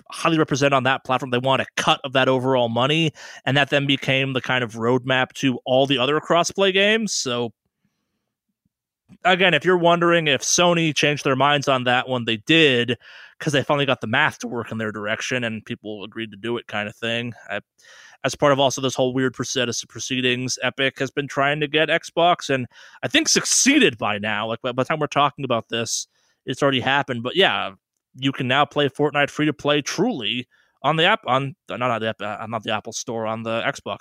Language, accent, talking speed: English, American, 215 wpm